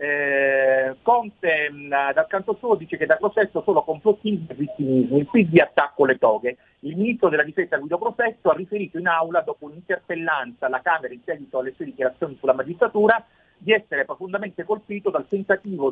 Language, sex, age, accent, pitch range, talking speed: Italian, male, 40-59, native, 135-190 Hz, 170 wpm